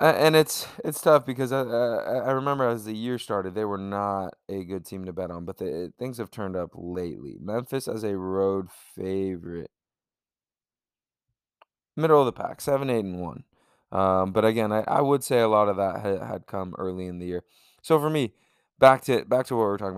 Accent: American